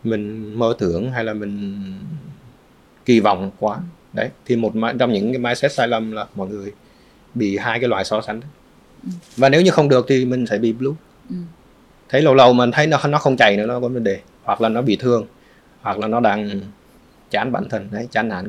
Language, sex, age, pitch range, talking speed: Vietnamese, male, 20-39, 110-135 Hz, 220 wpm